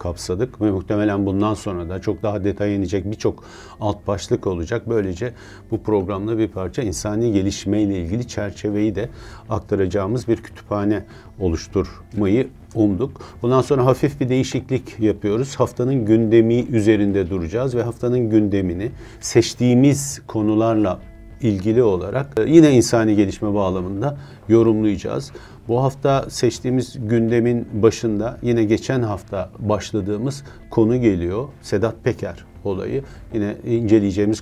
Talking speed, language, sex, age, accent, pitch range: 120 wpm, Turkish, male, 50-69, native, 100-120 Hz